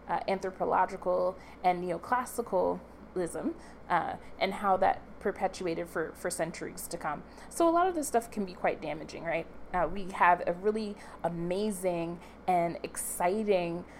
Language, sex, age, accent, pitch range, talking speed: English, female, 20-39, American, 185-240 Hz, 140 wpm